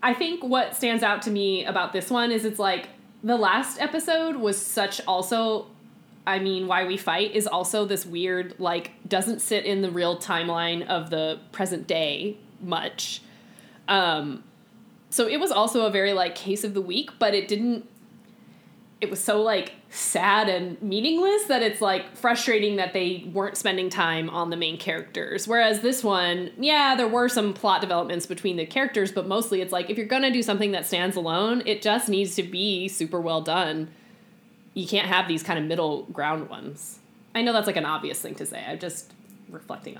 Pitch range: 185-230 Hz